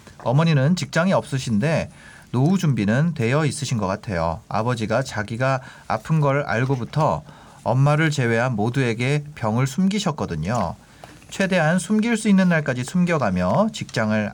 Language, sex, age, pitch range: Korean, male, 30-49, 110-165 Hz